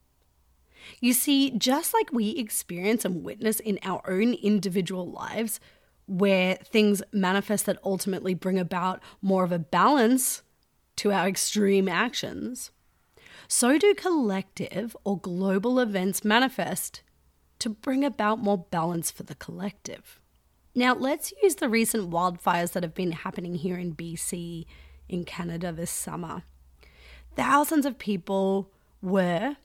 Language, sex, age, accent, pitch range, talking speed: English, female, 30-49, Australian, 180-225 Hz, 130 wpm